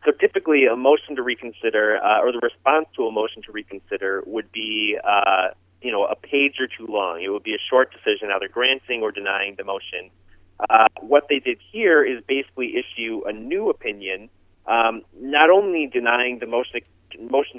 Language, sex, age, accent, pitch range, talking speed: English, male, 30-49, American, 100-155 Hz, 190 wpm